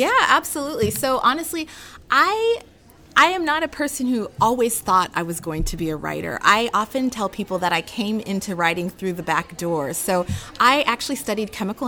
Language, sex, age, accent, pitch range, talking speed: English, female, 30-49, American, 180-240 Hz, 190 wpm